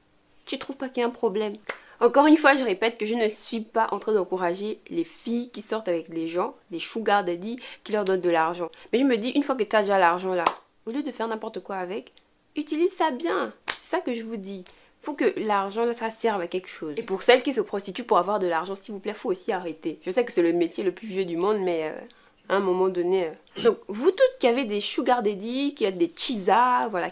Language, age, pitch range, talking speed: French, 20-39, 185-250 Hz, 270 wpm